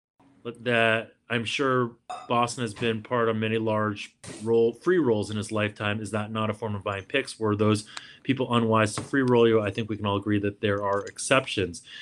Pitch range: 110-125 Hz